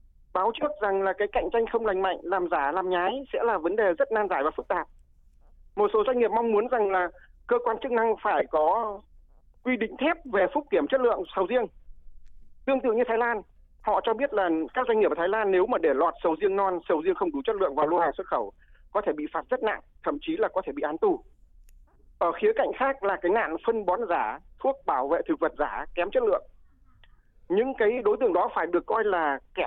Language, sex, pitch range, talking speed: Vietnamese, male, 170-280 Hz, 250 wpm